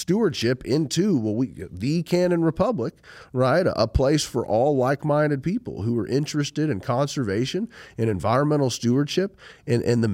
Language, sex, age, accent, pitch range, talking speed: English, male, 40-59, American, 105-140 Hz, 150 wpm